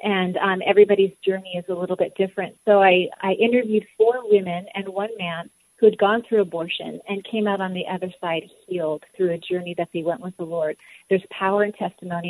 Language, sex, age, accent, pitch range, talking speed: English, female, 40-59, American, 180-200 Hz, 215 wpm